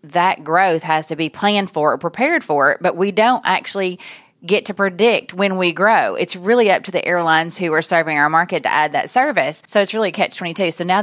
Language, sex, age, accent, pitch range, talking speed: English, female, 30-49, American, 160-215 Hz, 230 wpm